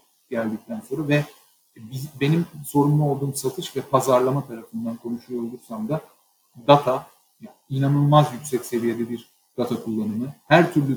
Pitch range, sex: 130-155 Hz, male